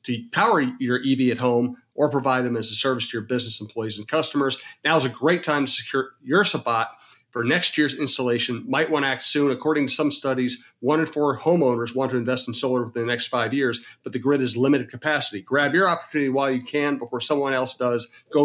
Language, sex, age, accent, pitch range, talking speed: English, male, 40-59, American, 120-140 Hz, 230 wpm